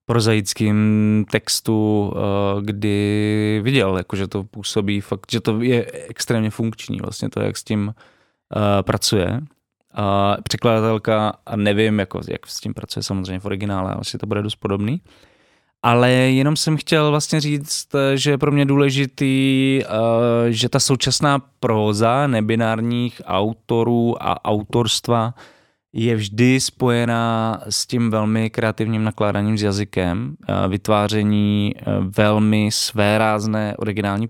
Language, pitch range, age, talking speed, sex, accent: English, 105-120 Hz, 20-39, 120 wpm, male, Czech